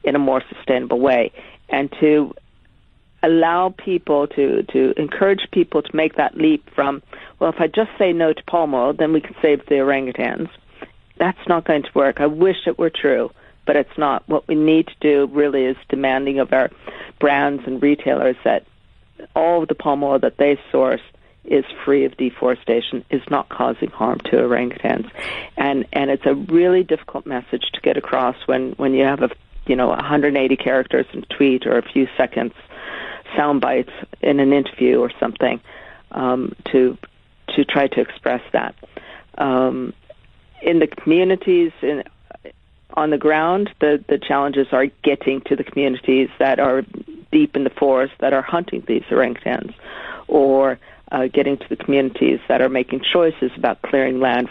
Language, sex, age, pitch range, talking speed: English, female, 50-69, 130-155 Hz, 175 wpm